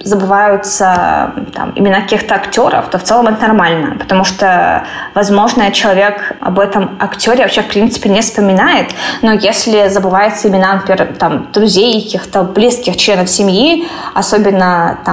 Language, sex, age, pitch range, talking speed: Russian, female, 20-39, 195-230 Hz, 125 wpm